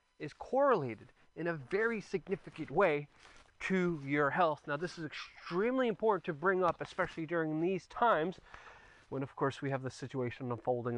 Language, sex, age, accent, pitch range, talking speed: English, male, 20-39, American, 115-165 Hz, 165 wpm